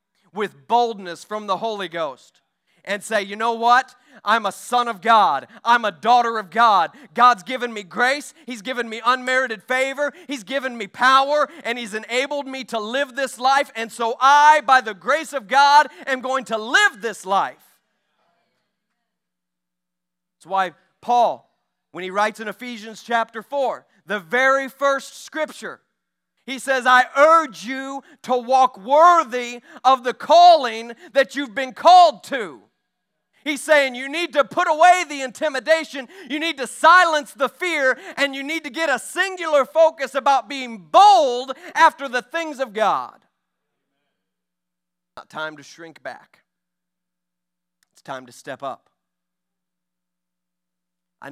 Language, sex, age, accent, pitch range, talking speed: English, male, 40-59, American, 175-275 Hz, 150 wpm